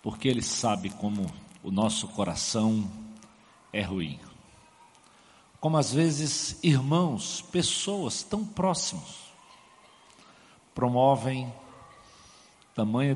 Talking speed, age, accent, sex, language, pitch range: 80 wpm, 60-79, Brazilian, male, English, 110-185 Hz